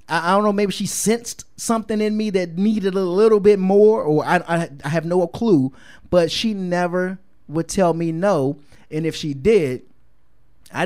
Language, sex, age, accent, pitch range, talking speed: English, male, 30-49, American, 140-205 Hz, 190 wpm